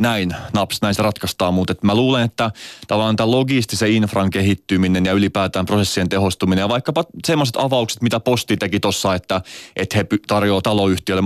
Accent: native